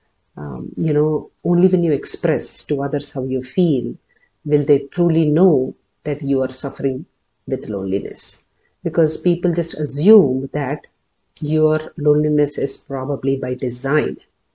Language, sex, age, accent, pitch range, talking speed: English, female, 50-69, Indian, 135-160 Hz, 130 wpm